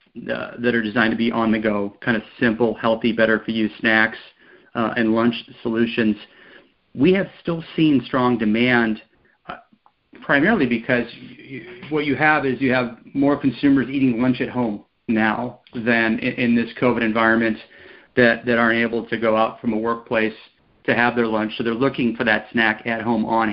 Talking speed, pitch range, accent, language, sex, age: 190 wpm, 110-125 Hz, American, English, male, 40-59